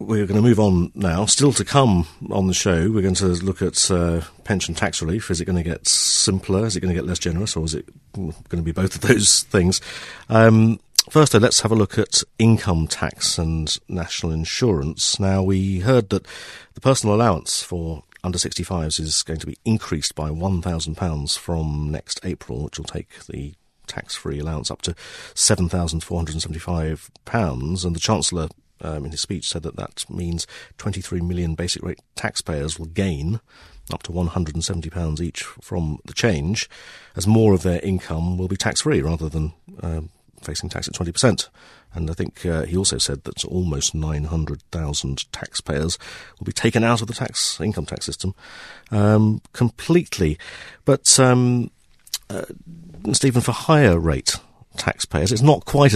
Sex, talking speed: male, 170 wpm